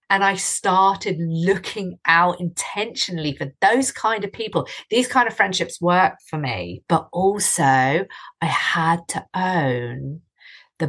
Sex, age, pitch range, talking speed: female, 40-59, 150-190 Hz, 140 wpm